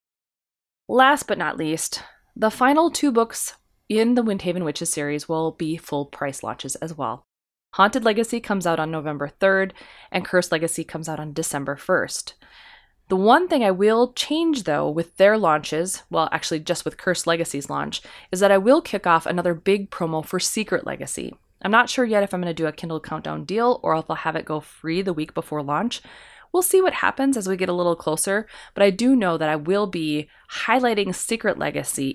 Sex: female